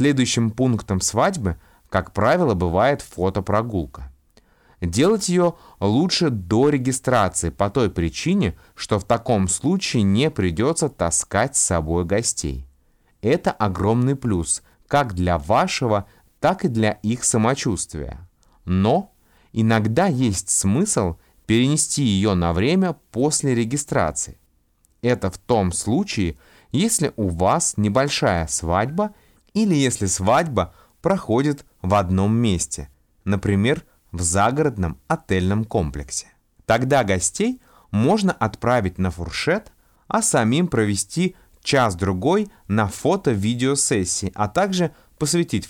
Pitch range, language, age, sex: 90-135 Hz, Russian, 30-49, male